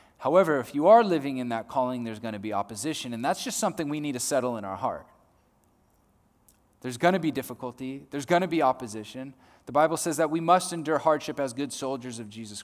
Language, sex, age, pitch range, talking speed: English, male, 20-39, 115-170 Hz, 225 wpm